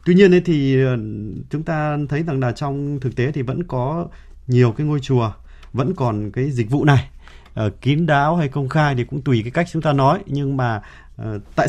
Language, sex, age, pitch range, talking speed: Vietnamese, male, 20-39, 110-150 Hz, 205 wpm